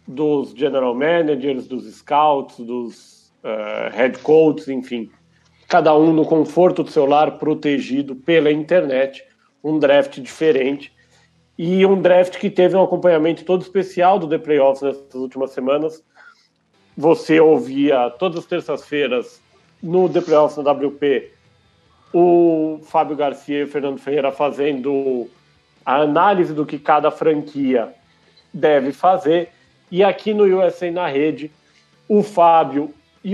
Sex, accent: male, Brazilian